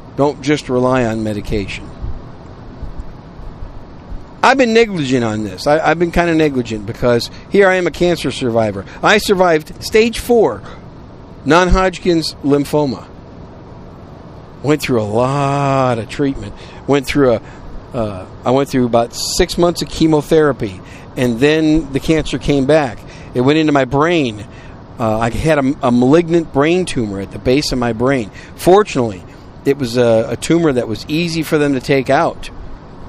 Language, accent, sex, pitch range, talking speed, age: English, American, male, 115-155 Hz, 155 wpm, 50-69